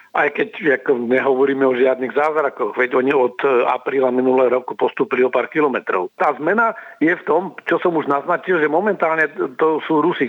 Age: 50-69